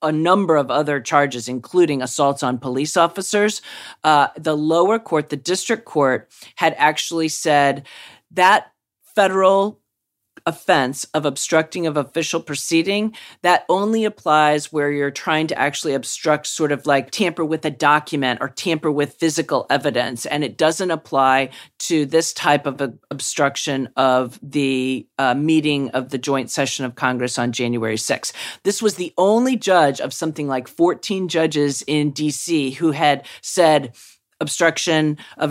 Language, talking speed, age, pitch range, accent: English, 150 wpm, 40-59, 140-180 Hz, American